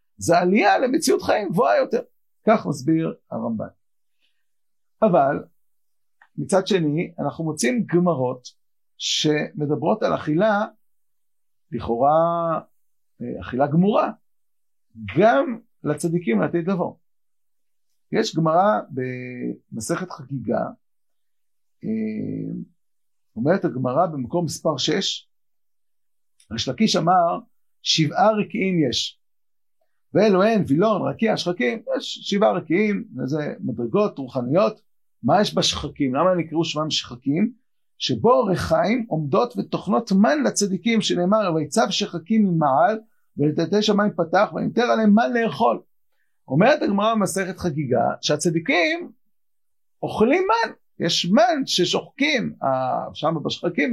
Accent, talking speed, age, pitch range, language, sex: native, 95 wpm, 50-69, 155-220 Hz, Hebrew, male